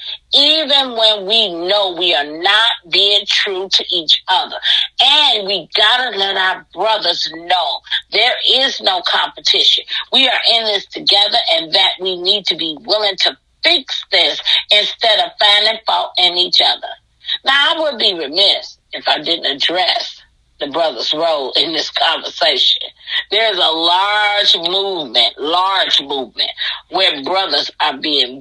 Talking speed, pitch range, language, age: 150 wpm, 185-280 Hz, English, 40-59